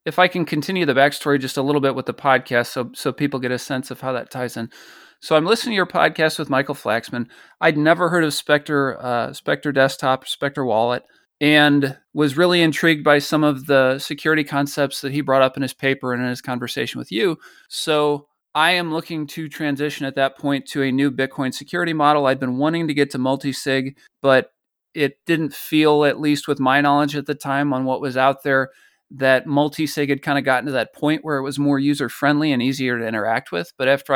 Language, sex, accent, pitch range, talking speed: English, male, American, 130-150 Hz, 220 wpm